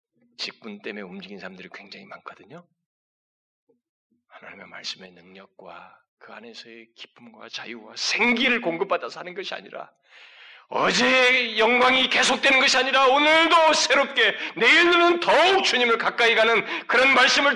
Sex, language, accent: male, Korean, native